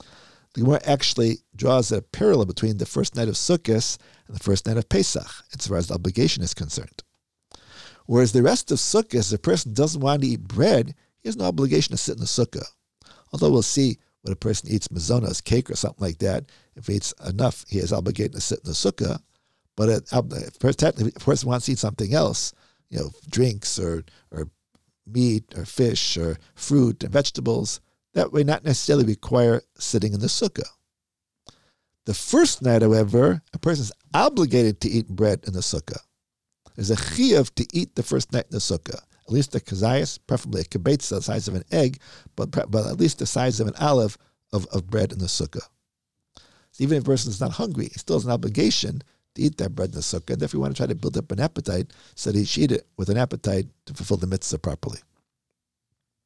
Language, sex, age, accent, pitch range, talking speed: English, male, 50-69, American, 100-135 Hz, 210 wpm